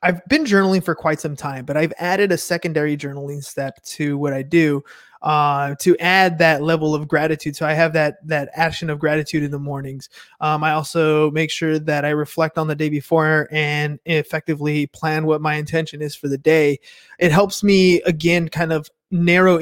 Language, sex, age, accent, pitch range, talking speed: English, male, 20-39, American, 150-175 Hz, 200 wpm